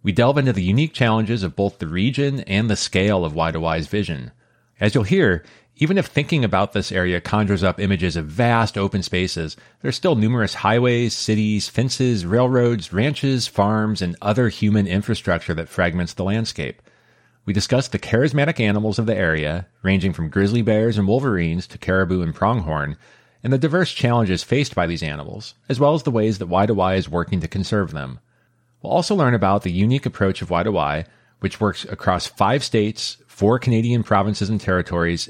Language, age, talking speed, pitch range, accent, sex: English, 30-49, 180 wpm, 90-115 Hz, American, male